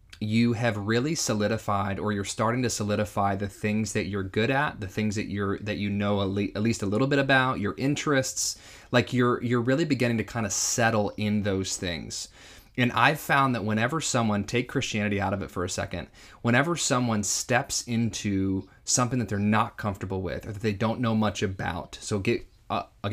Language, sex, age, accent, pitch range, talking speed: English, male, 20-39, American, 100-120 Hz, 200 wpm